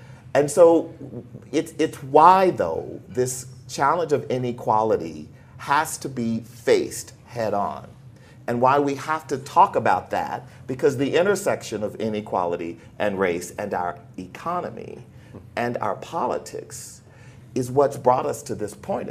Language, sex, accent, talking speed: English, male, American, 140 wpm